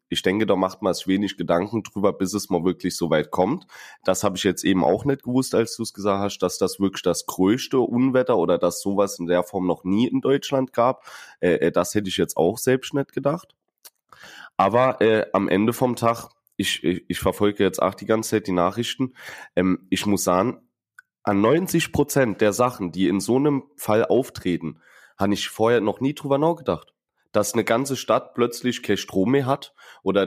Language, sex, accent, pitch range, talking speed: German, male, German, 95-120 Hz, 200 wpm